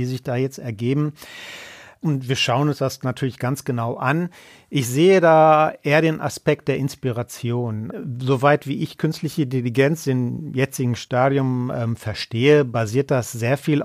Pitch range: 125-150 Hz